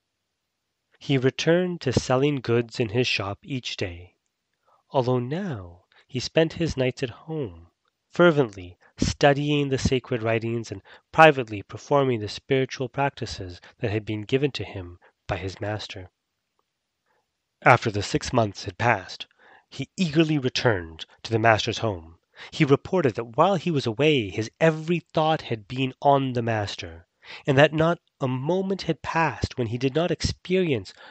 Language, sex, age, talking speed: English, male, 30-49, 150 wpm